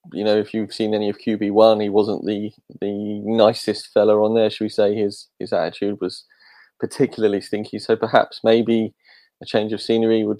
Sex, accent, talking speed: male, British, 190 wpm